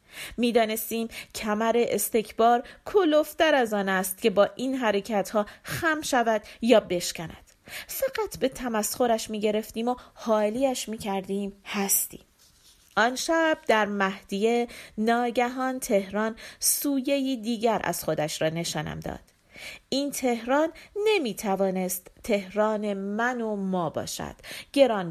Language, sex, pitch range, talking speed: Persian, female, 195-240 Hz, 110 wpm